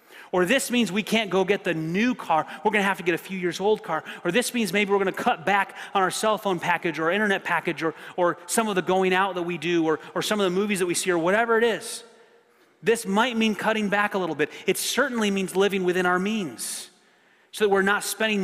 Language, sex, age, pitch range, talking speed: English, male, 30-49, 150-200 Hz, 265 wpm